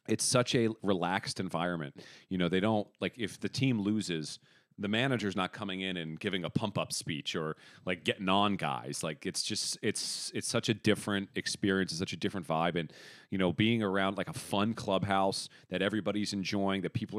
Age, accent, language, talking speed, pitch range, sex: 40-59, American, English, 200 wpm, 90-105 Hz, male